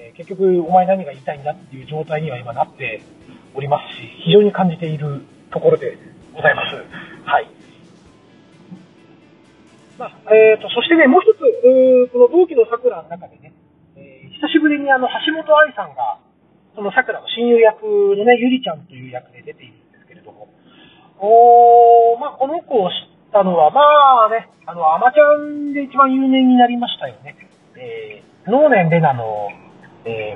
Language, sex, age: Japanese, male, 40-59